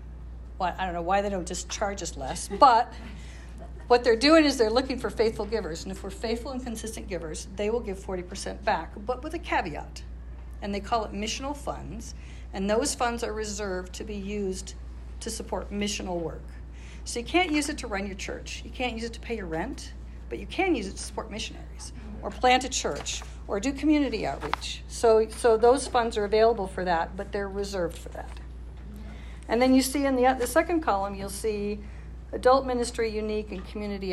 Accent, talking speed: American, 205 wpm